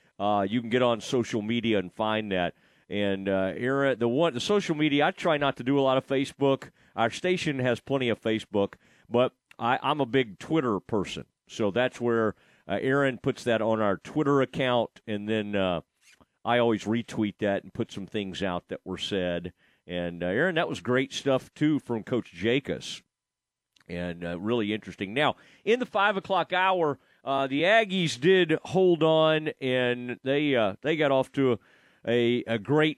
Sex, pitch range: male, 110-150 Hz